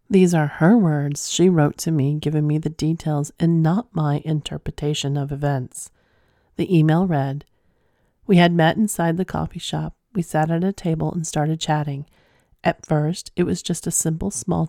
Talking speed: 180 wpm